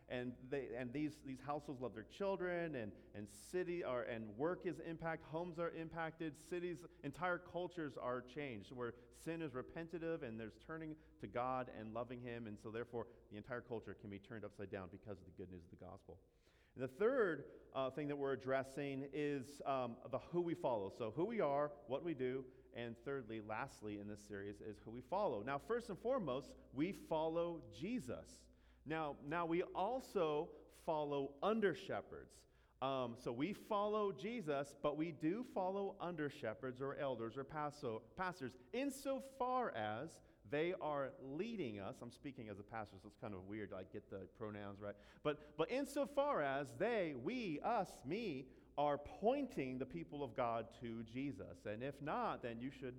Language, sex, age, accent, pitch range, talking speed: English, male, 40-59, American, 115-165 Hz, 180 wpm